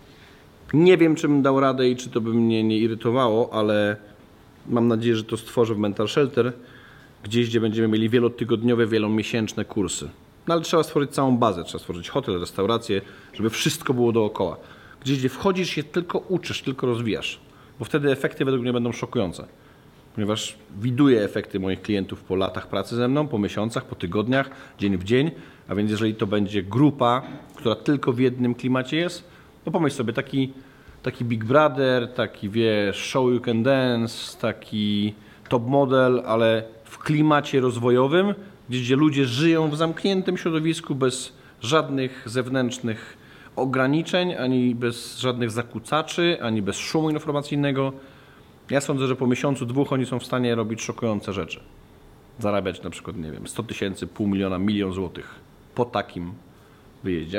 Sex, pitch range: male, 110-140 Hz